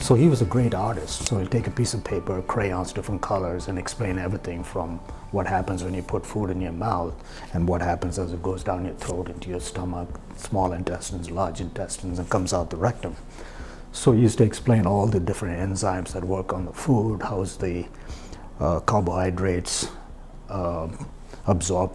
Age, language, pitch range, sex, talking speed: 60-79, English, 90-115 Hz, male, 190 wpm